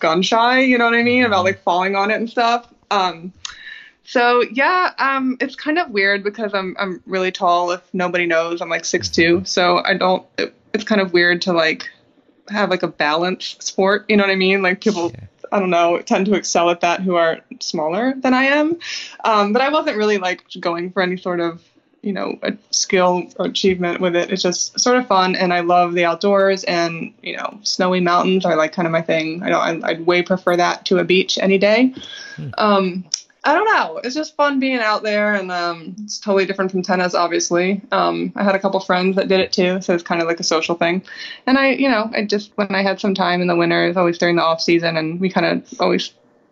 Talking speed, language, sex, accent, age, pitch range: 235 wpm, English, female, American, 20-39, 175-215 Hz